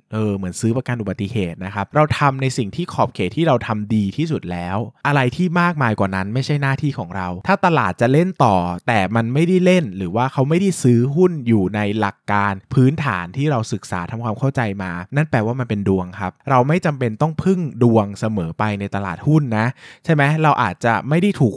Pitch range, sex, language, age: 105-140 Hz, male, Thai, 20-39